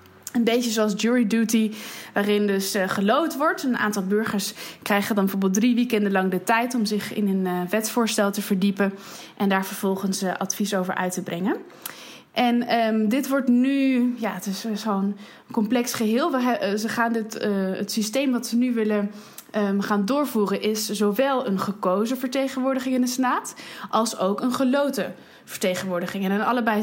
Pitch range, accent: 200-235 Hz, Dutch